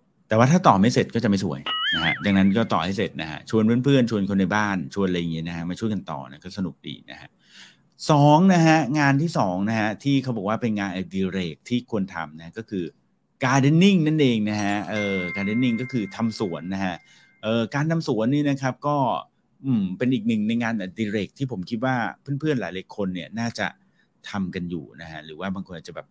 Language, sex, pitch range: English, male, 95-130 Hz